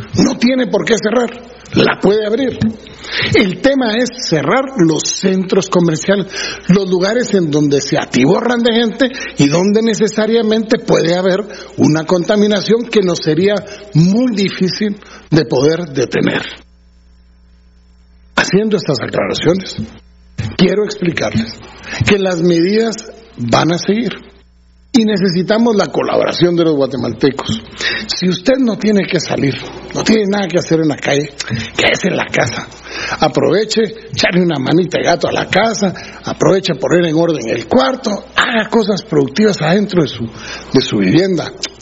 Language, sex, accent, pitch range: Spanish, male, Mexican, 145-215 Hz